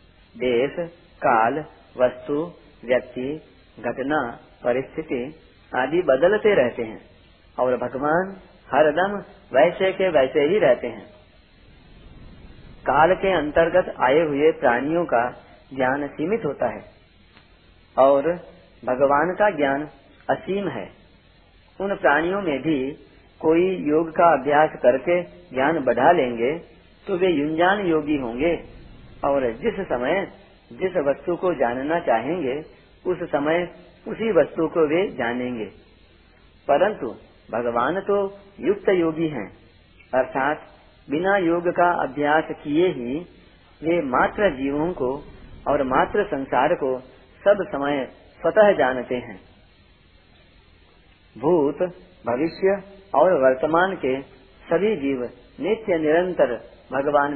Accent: native